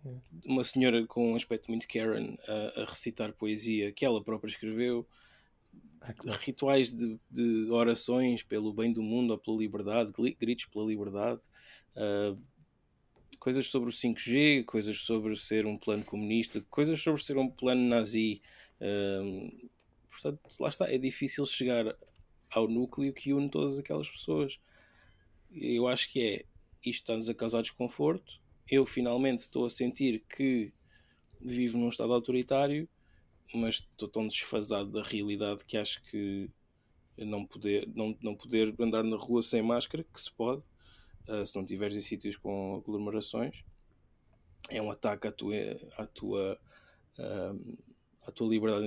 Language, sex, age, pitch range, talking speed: English, male, 20-39, 105-125 Hz, 145 wpm